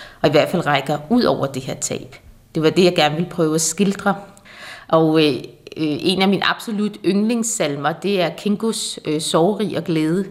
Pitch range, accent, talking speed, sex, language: 155-195 Hz, native, 200 wpm, female, Danish